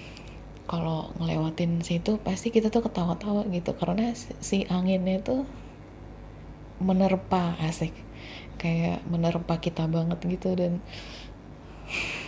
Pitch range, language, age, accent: 165-190 Hz, Indonesian, 20-39, native